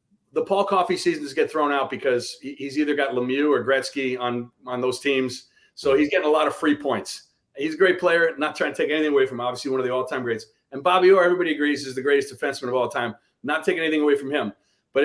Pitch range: 135-185 Hz